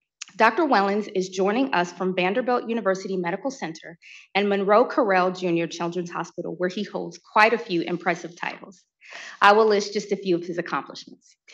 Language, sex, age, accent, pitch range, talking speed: English, female, 20-39, American, 175-220 Hz, 170 wpm